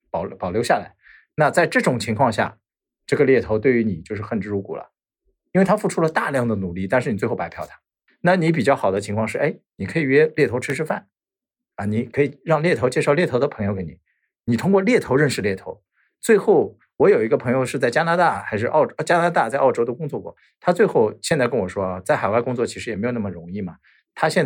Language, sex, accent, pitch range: Chinese, male, native, 105-155 Hz